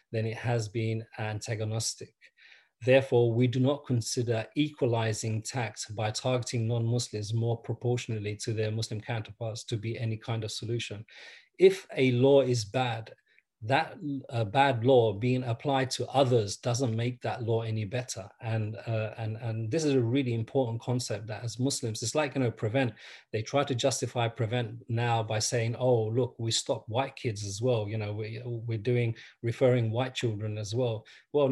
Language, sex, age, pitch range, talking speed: English, male, 30-49, 110-130 Hz, 175 wpm